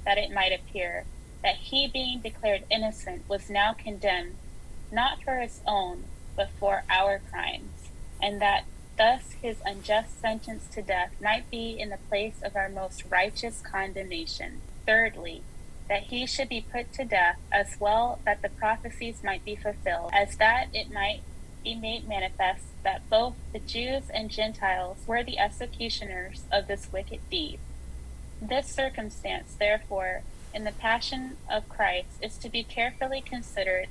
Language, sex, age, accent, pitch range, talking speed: English, female, 20-39, American, 195-230 Hz, 155 wpm